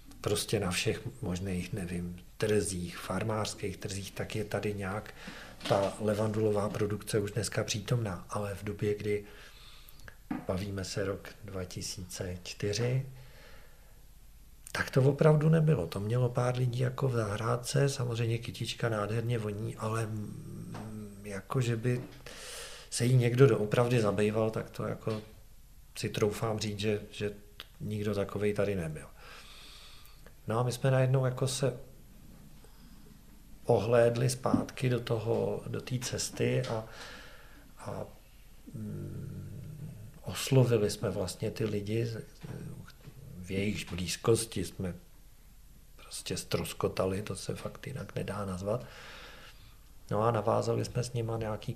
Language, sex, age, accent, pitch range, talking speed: Czech, male, 50-69, native, 100-120 Hz, 115 wpm